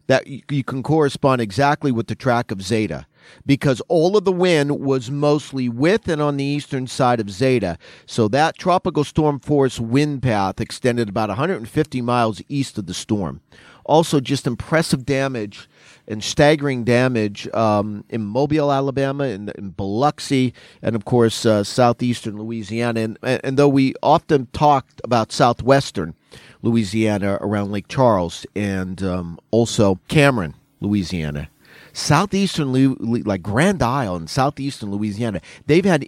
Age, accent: 40-59, American